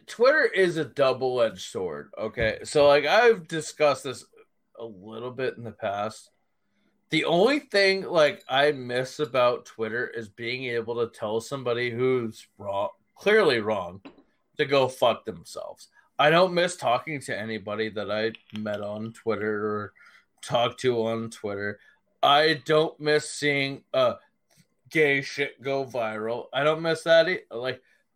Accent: American